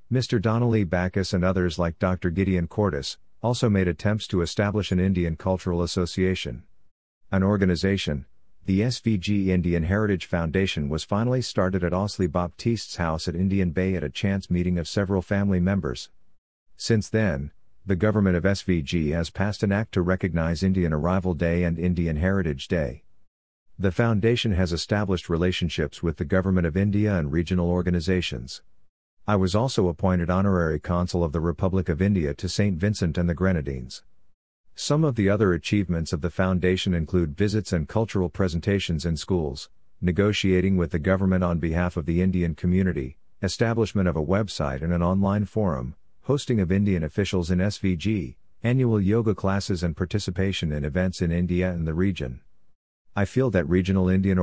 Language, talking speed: English, 165 wpm